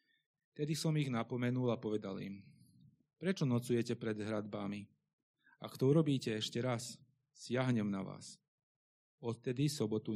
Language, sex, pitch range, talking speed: Slovak, male, 110-135 Hz, 125 wpm